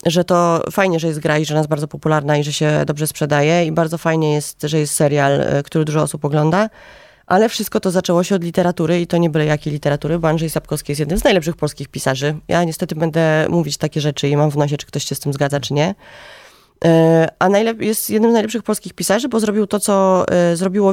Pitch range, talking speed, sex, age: 160-200 Hz, 230 wpm, female, 20-39